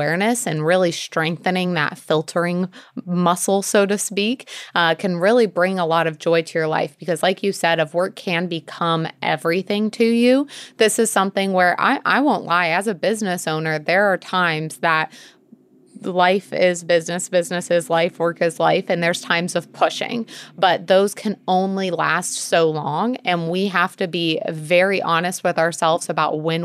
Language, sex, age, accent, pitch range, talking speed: English, female, 20-39, American, 165-195 Hz, 180 wpm